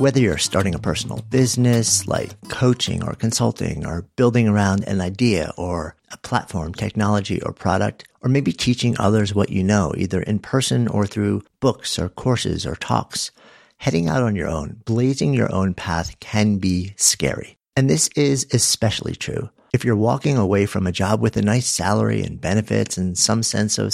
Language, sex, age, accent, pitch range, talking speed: English, male, 50-69, American, 90-120 Hz, 180 wpm